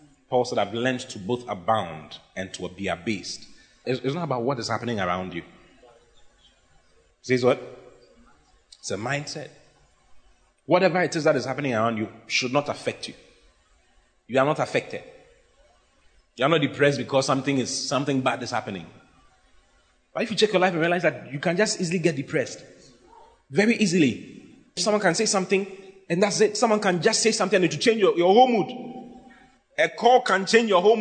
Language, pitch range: English, 140-215 Hz